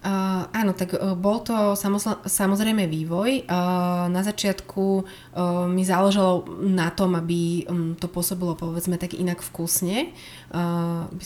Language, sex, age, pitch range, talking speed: Slovak, female, 20-39, 170-190 Hz, 130 wpm